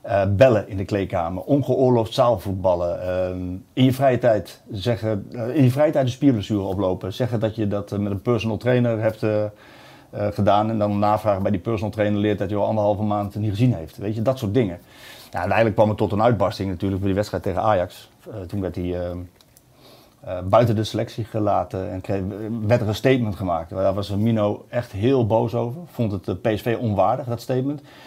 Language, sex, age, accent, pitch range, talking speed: Dutch, male, 50-69, Dutch, 105-135 Hz, 205 wpm